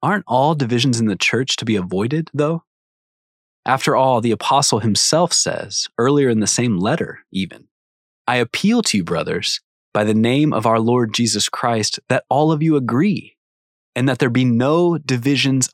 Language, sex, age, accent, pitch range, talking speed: English, male, 20-39, American, 105-130 Hz, 175 wpm